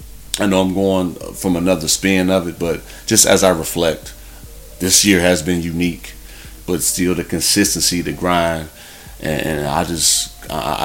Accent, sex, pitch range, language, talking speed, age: American, male, 85-100 Hz, English, 155 wpm, 30-49